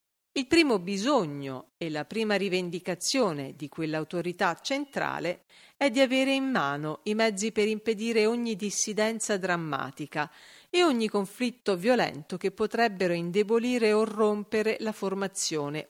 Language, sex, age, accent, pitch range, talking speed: Italian, female, 40-59, native, 170-225 Hz, 125 wpm